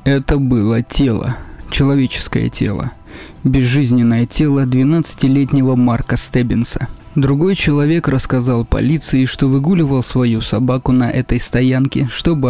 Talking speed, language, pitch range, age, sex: 105 wpm, Russian, 125-145 Hz, 20-39, male